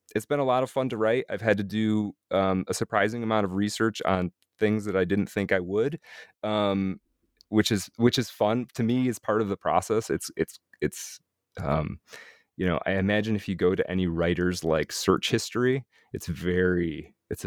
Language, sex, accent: English, male, American